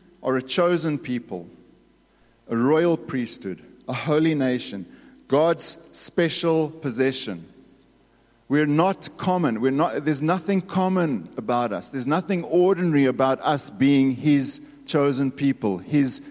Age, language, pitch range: 50-69, English, 135-190 Hz